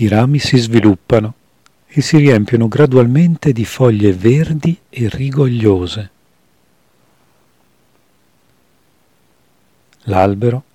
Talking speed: 80 wpm